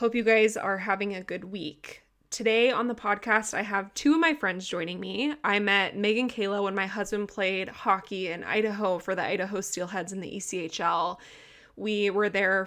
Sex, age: female, 20-39